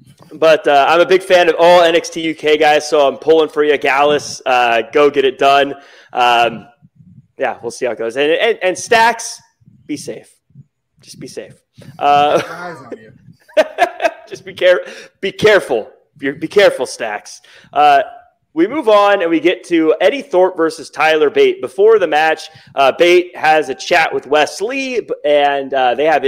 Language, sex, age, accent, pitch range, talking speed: English, male, 30-49, American, 145-230 Hz, 175 wpm